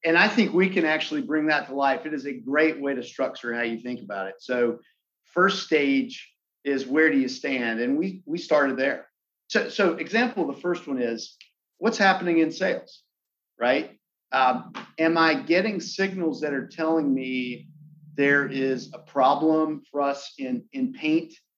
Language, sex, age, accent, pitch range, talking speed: English, male, 40-59, American, 135-195 Hz, 185 wpm